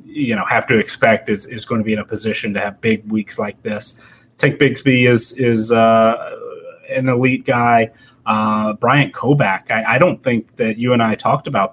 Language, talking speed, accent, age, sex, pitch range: English, 205 wpm, American, 30-49, male, 110-135 Hz